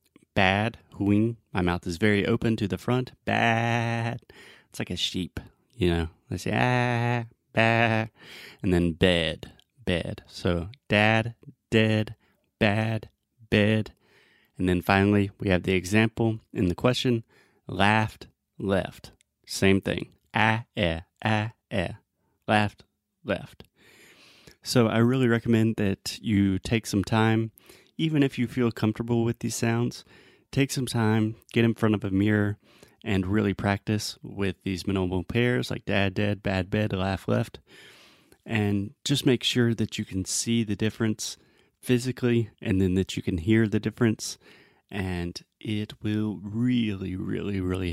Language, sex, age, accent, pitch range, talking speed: Portuguese, male, 30-49, American, 100-120 Hz, 140 wpm